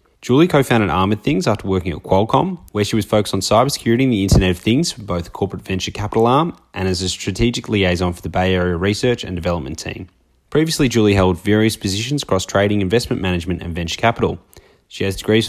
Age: 20-39